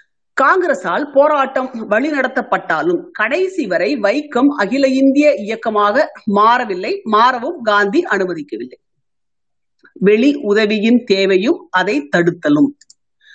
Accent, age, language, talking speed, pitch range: native, 50-69, Tamil, 85 wpm, 215-300 Hz